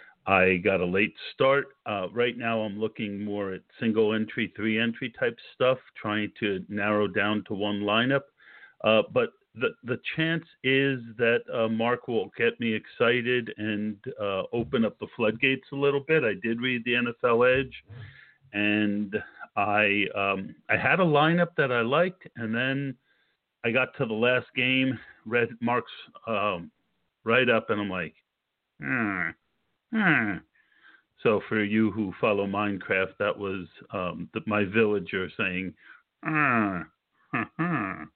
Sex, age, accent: male, 50-69, American